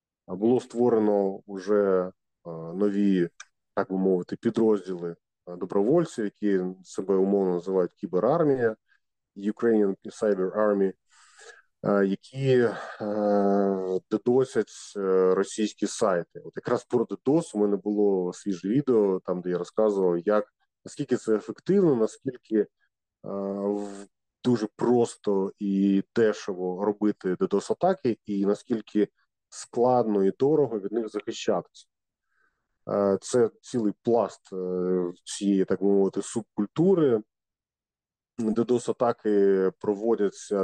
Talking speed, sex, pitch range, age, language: 95 wpm, male, 95-115 Hz, 20-39, Ukrainian